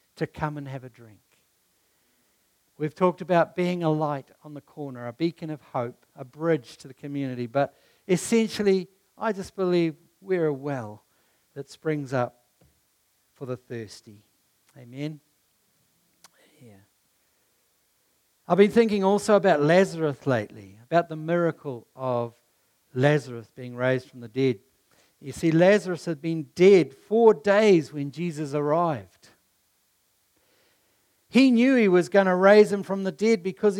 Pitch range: 125-185 Hz